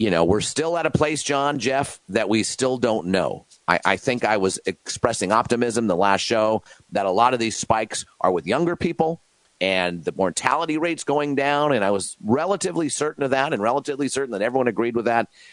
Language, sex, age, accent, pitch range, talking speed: English, male, 40-59, American, 105-145 Hz, 215 wpm